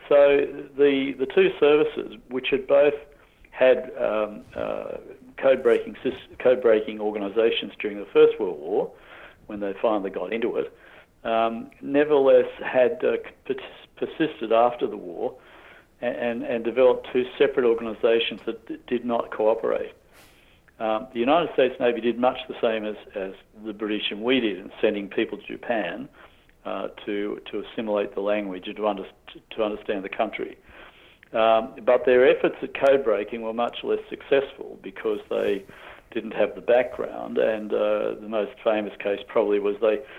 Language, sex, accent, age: English, male, Australian, 50-69